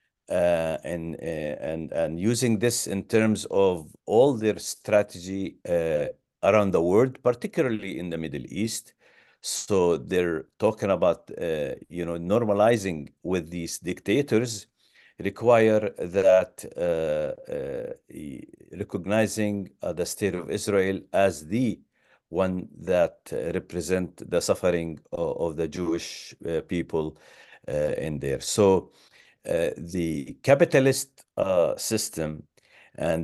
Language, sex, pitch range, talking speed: English, male, 95-145 Hz, 120 wpm